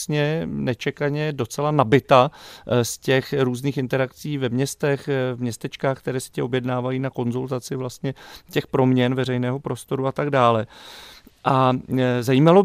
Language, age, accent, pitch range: Czech, 40-59, native, 115-140 Hz